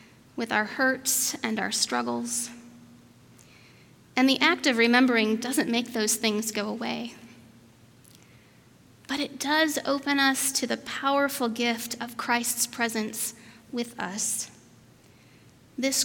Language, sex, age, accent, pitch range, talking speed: English, female, 30-49, American, 210-255 Hz, 120 wpm